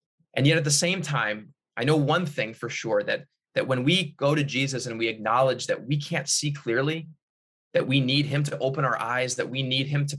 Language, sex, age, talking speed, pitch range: English, male, 20-39, 235 wpm, 130-155 Hz